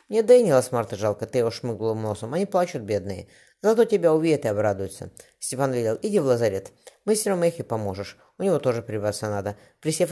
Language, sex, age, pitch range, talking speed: Russian, female, 20-39, 110-155 Hz, 180 wpm